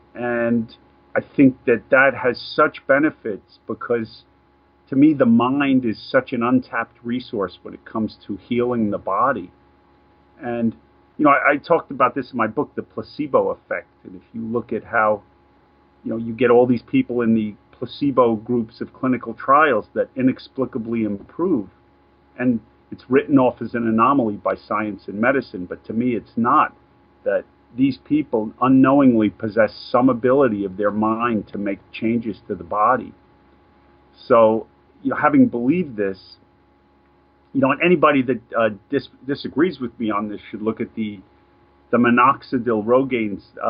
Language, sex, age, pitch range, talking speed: English, male, 40-59, 95-125 Hz, 160 wpm